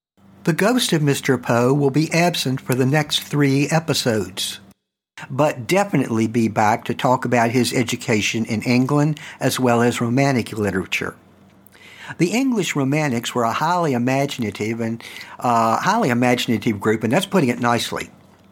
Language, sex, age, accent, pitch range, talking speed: English, male, 60-79, American, 115-145 Hz, 150 wpm